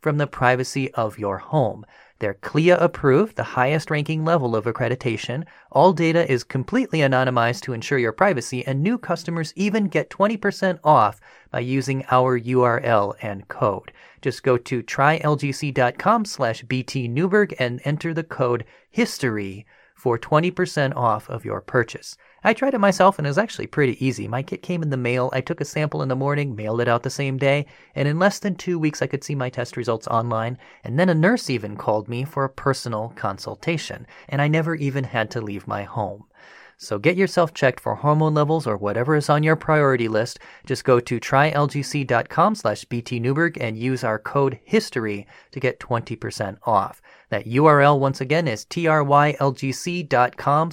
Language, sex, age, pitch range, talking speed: English, male, 30-49, 120-155 Hz, 180 wpm